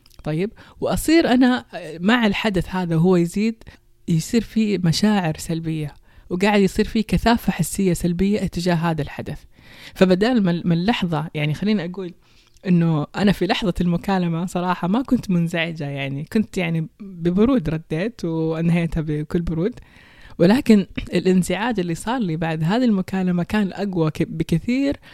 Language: Persian